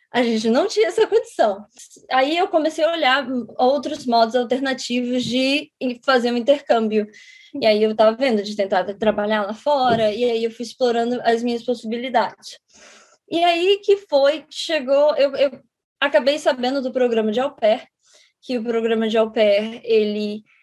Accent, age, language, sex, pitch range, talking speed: Brazilian, 20-39, Portuguese, female, 220-285 Hz, 160 wpm